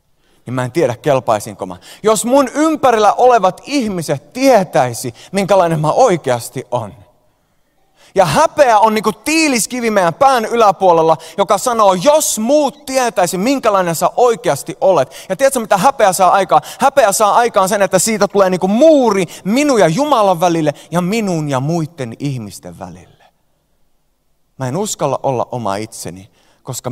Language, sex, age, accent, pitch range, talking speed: Finnish, male, 30-49, native, 130-215 Hz, 145 wpm